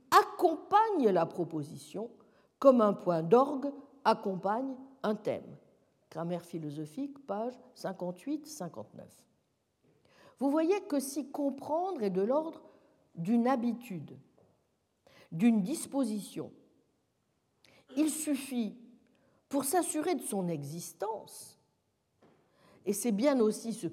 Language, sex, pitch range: French, female, 185-305 Hz